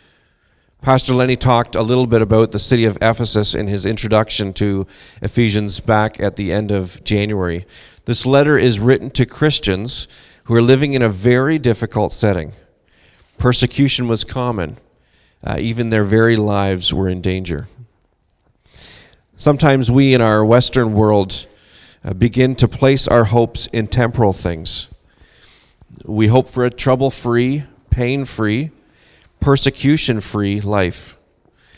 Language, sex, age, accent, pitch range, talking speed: English, male, 40-59, American, 100-125 Hz, 130 wpm